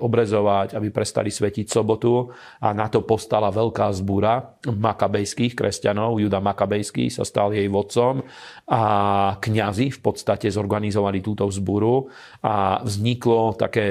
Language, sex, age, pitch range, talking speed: Slovak, male, 40-59, 100-110 Hz, 120 wpm